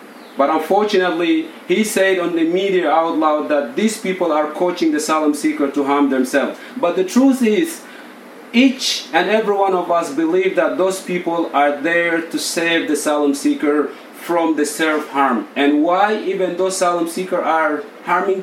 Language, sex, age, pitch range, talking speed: English, male, 40-59, 160-205 Hz, 170 wpm